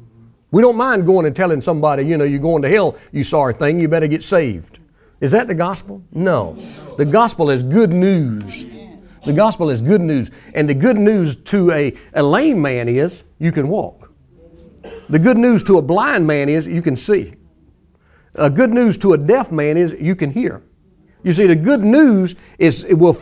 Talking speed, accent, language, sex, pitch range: 200 wpm, American, English, male, 145-185 Hz